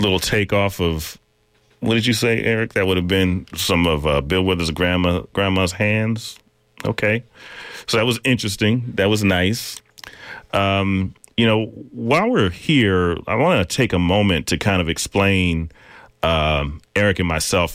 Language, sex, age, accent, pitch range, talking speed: English, male, 40-59, American, 80-100 Hz, 165 wpm